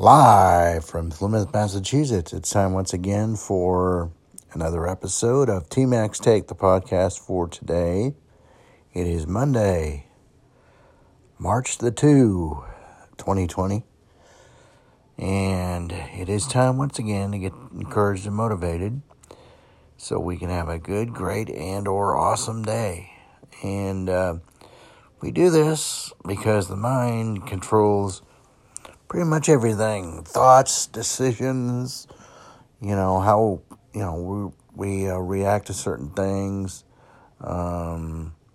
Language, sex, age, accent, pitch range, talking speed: English, male, 50-69, American, 90-115 Hz, 115 wpm